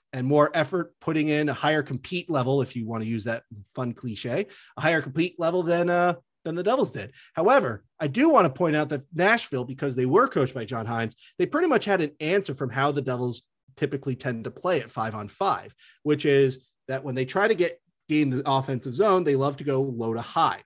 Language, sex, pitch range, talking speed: English, male, 120-160 Hz, 230 wpm